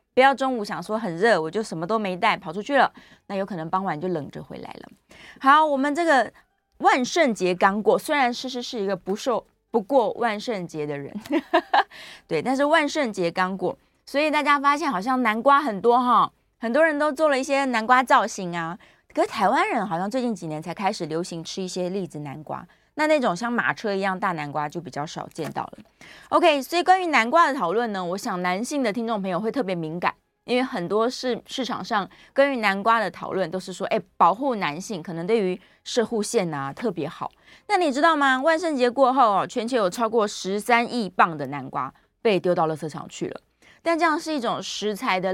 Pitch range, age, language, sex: 185-275 Hz, 20-39, Chinese, female